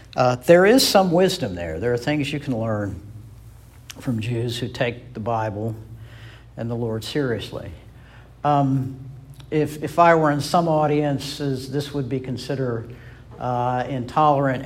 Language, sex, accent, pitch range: English, male, American, 115-140 Hz